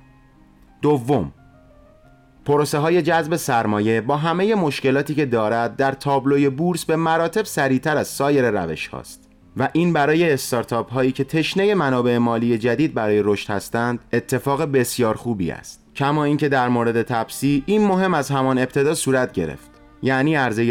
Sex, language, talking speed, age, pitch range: male, Persian, 150 wpm, 30-49, 115-150 Hz